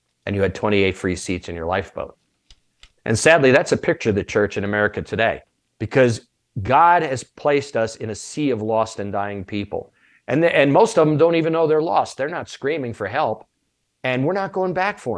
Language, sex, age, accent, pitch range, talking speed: English, male, 50-69, American, 110-155 Hz, 220 wpm